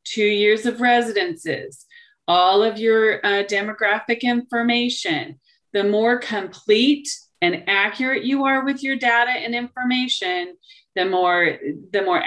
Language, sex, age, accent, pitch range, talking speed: English, female, 30-49, American, 200-245 Hz, 125 wpm